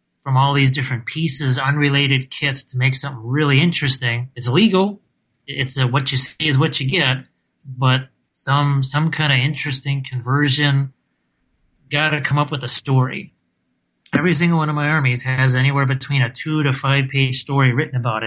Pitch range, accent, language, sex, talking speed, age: 130-145 Hz, American, English, male, 175 wpm, 30-49